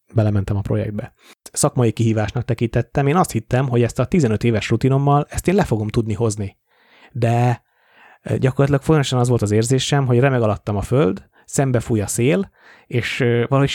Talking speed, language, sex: 165 wpm, Hungarian, male